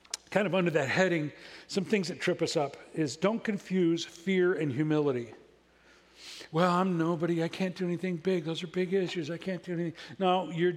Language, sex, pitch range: English, male, 155-185 Hz